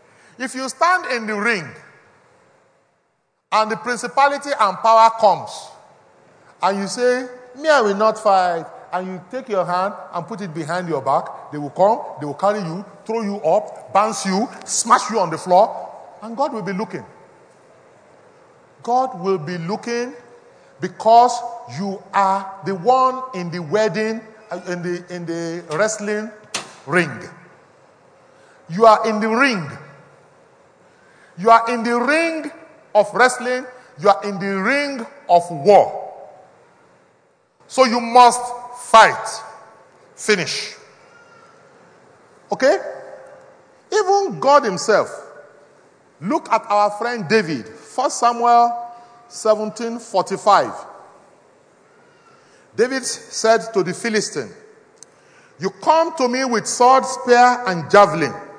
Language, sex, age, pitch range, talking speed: English, male, 40-59, 195-255 Hz, 125 wpm